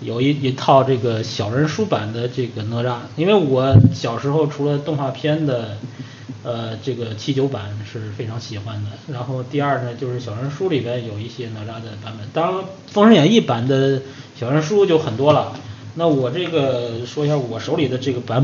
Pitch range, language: 120-150 Hz, Chinese